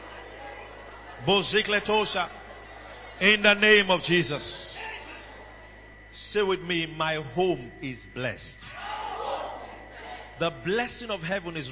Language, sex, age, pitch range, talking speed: English, male, 50-69, 190-220 Hz, 90 wpm